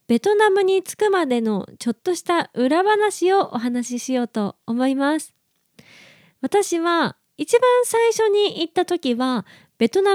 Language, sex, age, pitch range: Japanese, female, 20-39, 225-315 Hz